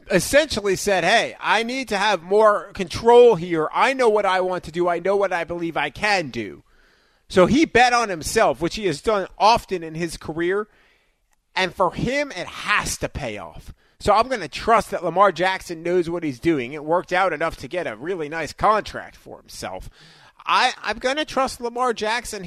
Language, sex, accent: English, male, American